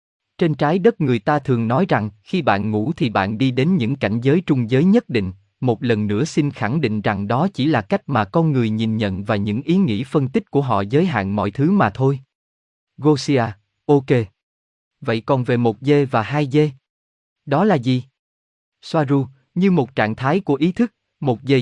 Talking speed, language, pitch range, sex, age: 210 wpm, Vietnamese, 115-160 Hz, male, 20-39